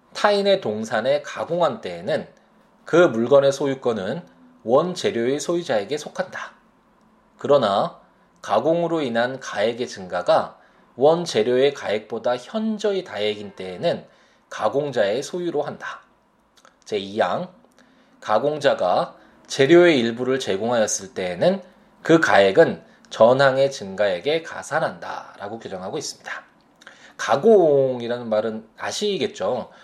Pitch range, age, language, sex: 105-165 Hz, 20-39, Korean, male